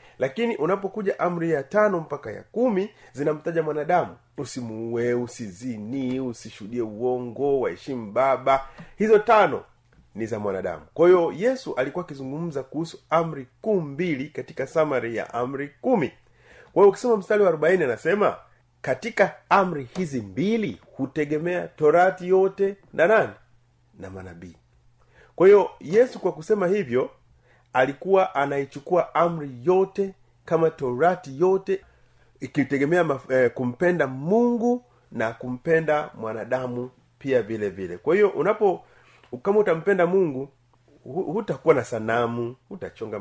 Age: 30-49